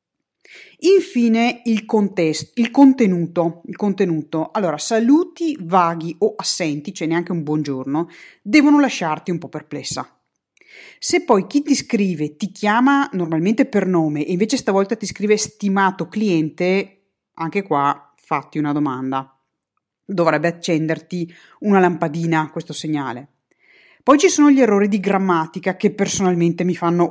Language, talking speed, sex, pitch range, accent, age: Italian, 135 wpm, female, 170-215 Hz, native, 30-49